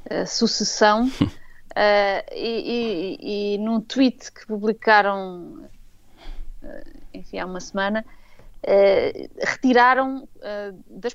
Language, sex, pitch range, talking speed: Portuguese, female, 195-235 Hz, 75 wpm